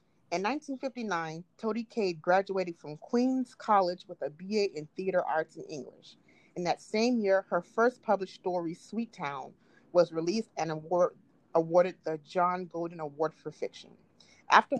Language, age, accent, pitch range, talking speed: English, 30-49, American, 170-215 Hz, 150 wpm